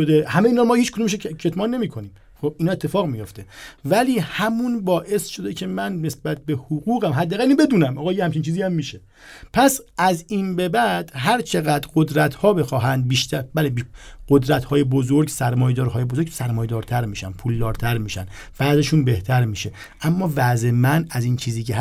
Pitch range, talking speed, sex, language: 125-175 Hz, 170 wpm, male, Persian